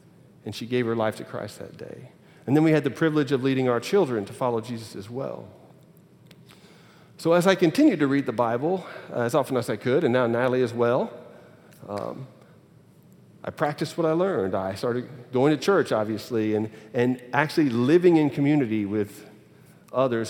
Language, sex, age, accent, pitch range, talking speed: English, male, 40-59, American, 115-145 Hz, 185 wpm